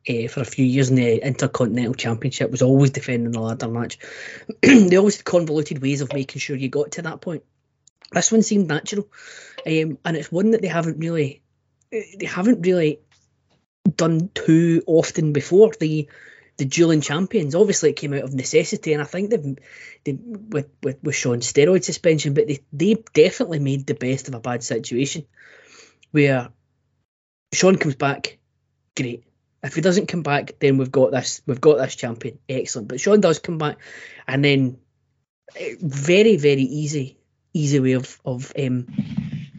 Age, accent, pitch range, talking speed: 20-39, British, 130-160 Hz, 170 wpm